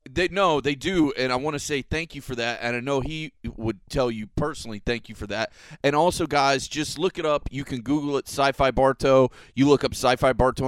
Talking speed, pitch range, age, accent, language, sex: 240 wpm, 115-150 Hz, 30-49, American, English, male